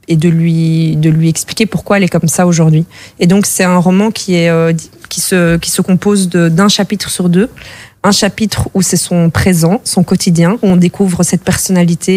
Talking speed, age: 205 wpm, 20-39